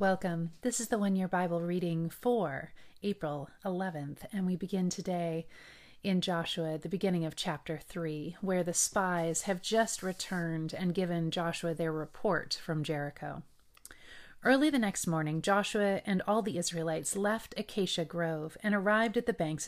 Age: 30-49